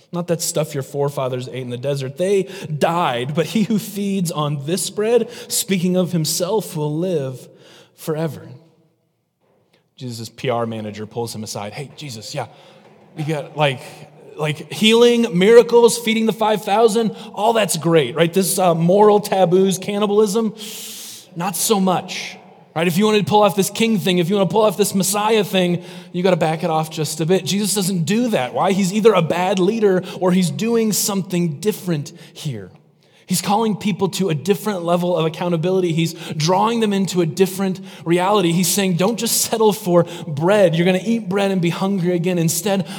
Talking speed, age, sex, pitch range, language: 185 wpm, 30-49, male, 165-200 Hz, English